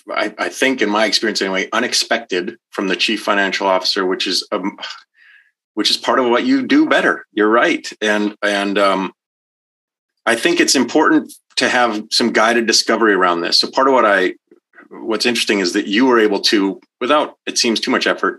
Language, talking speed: English, 195 wpm